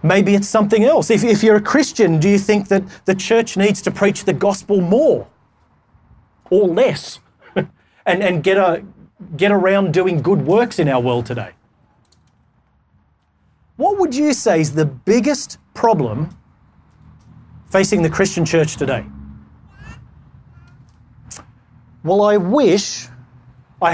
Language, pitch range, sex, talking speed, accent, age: English, 130-210 Hz, male, 135 wpm, Australian, 30-49